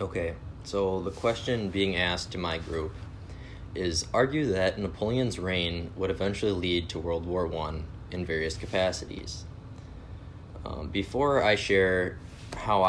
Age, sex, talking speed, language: 20-39, male, 135 wpm, English